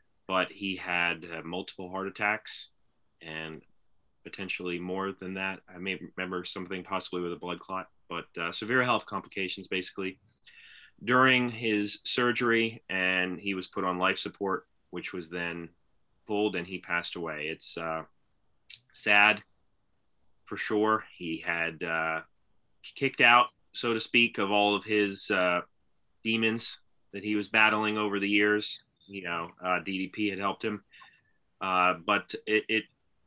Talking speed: 150 wpm